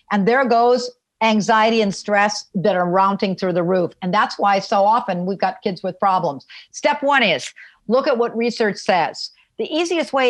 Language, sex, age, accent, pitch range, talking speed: English, female, 50-69, American, 200-275 Hz, 190 wpm